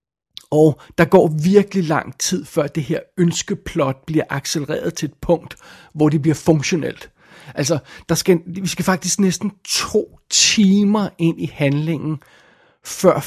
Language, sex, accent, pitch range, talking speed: Danish, male, native, 150-180 Hz, 145 wpm